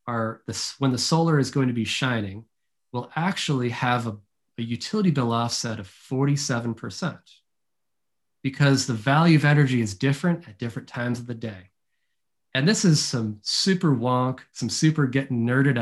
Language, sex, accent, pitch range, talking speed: English, male, American, 115-145 Hz, 155 wpm